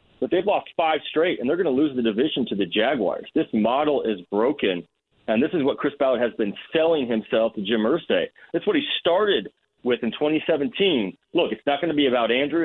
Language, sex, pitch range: English, male, 110-165 Hz